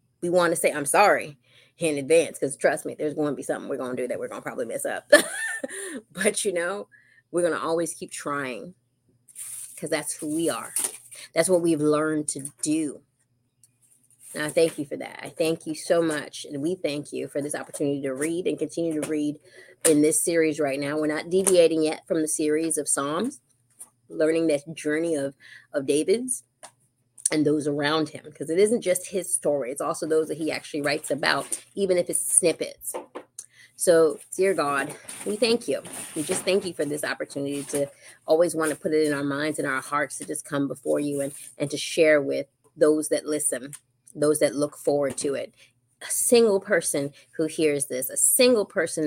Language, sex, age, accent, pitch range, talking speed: English, female, 20-39, American, 140-175 Hz, 200 wpm